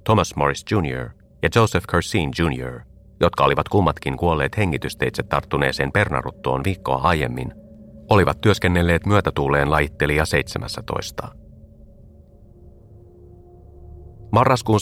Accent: native